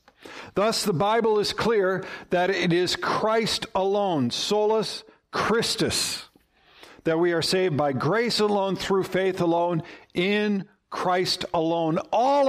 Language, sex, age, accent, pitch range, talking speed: English, male, 60-79, American, 155-200 Hz, 125 wpm